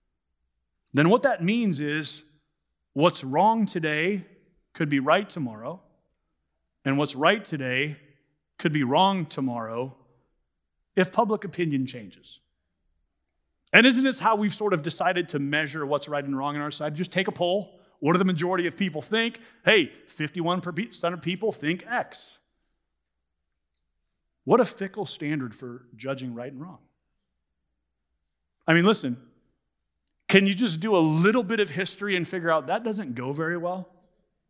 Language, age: English, 40-59